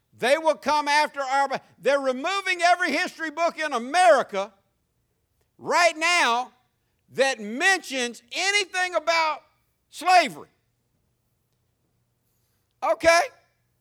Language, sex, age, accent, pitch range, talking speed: English, male, 60-79, American, 230-310 Hz, 85 wpm